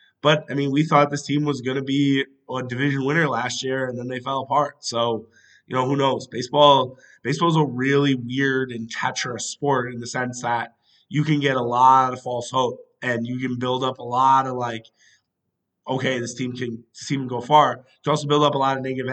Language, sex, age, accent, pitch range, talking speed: English, male, 20-39, American, 120-135 Hz, 230 wpm